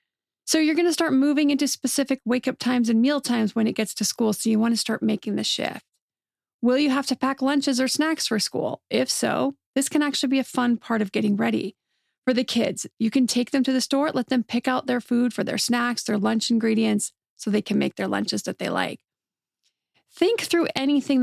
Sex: female